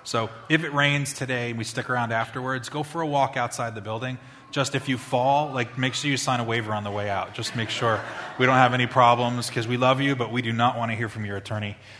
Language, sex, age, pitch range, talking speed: English, male, 20-39, 125-155 Hz, 270 wpm